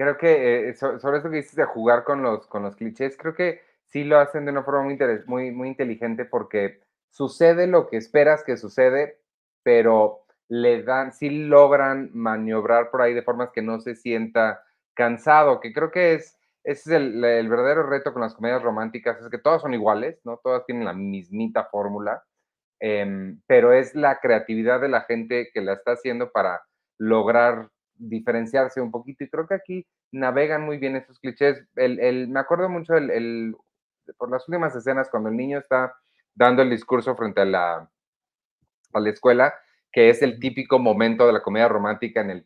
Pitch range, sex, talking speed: 115-140 Hz, male, 180 wpm